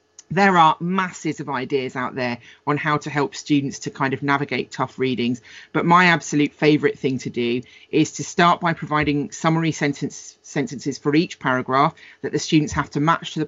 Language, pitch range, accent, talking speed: English, 140-160 Hz, British, 195 wpm